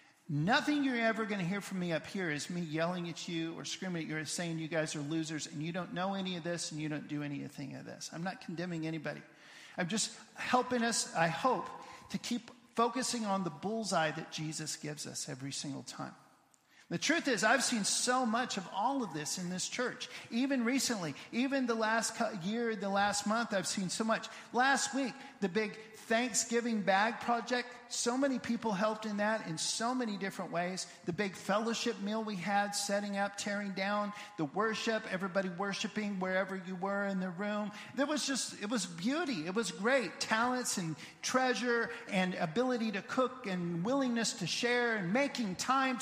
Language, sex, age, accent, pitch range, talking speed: English, male, 50-69, American, 185-235 Hz, 195 wpm